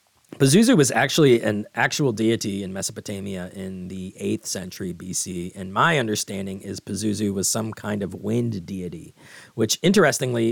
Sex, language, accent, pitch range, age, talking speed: male, English, American, 95-115 Hz, 30-49, 150 wpm